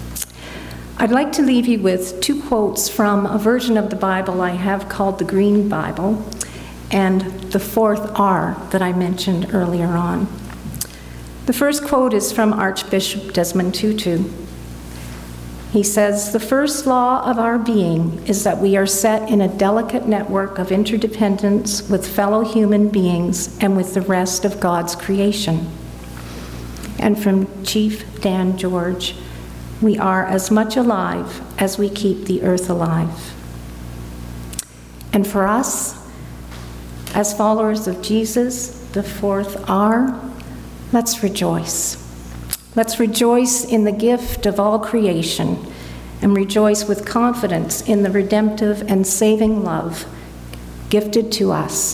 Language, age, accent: English, 50-69, American